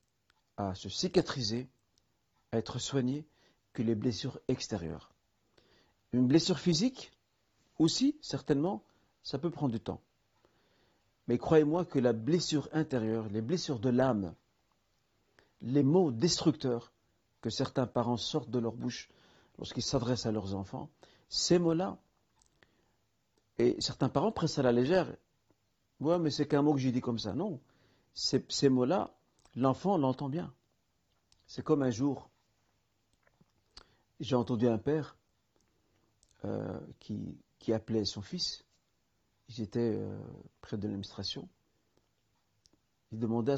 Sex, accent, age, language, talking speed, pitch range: male, French, 50-69, French, 125 wpm, 110-140 Hz